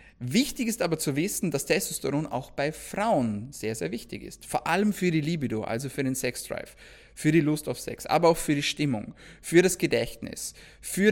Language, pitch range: German, 120-165 Hz